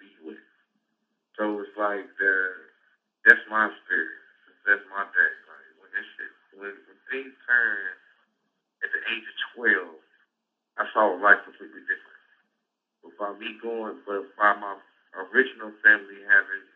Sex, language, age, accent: male, English, 60-79, American